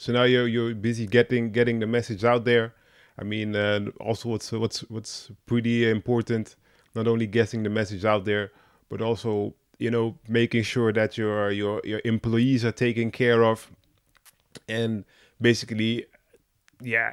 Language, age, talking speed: English, 30-49, 160 wpm